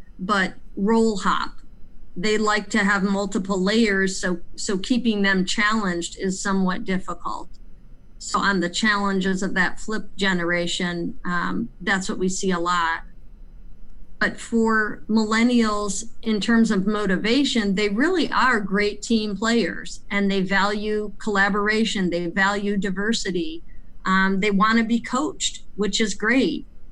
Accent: American